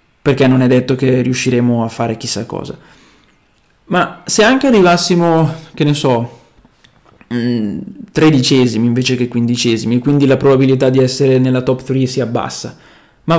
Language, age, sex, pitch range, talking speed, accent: Italian, 20-39, male, 125-155 Hz, 150 wpm, native